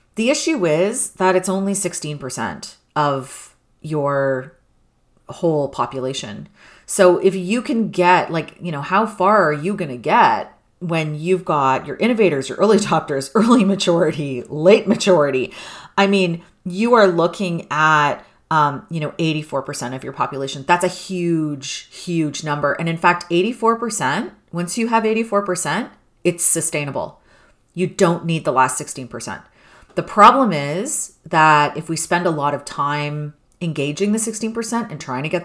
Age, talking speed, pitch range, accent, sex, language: 30-49, 150 wpm, 150-195 Hz, American, female, English